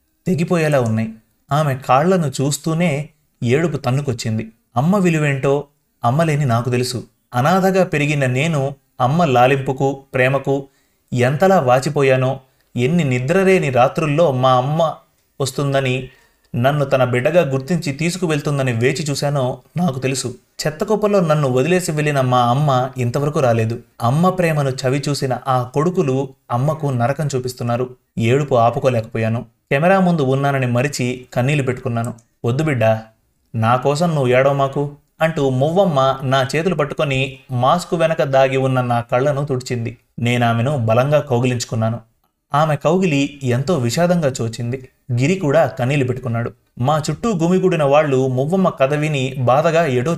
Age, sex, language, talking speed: 30-49, male, Telugu, 115 wpm